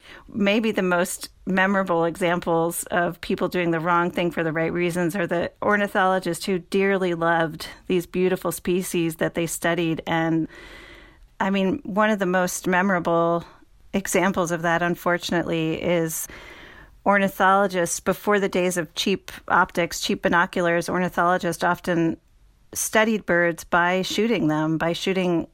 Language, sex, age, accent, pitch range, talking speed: English, female, 40-59, American, 165-190 Hz, 135 wpm